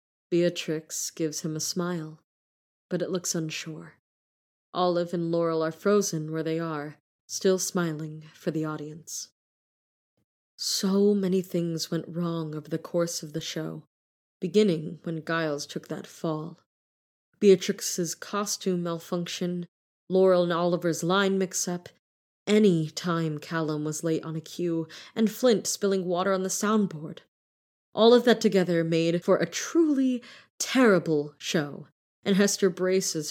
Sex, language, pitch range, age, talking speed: female, English, 155-195 Hz, 20-39, 135 wpm